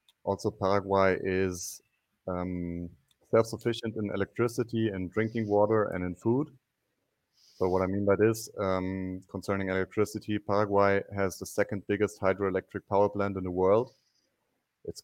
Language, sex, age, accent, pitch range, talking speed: English, male, 30-49, German, 95-105 Hz, 135 wpm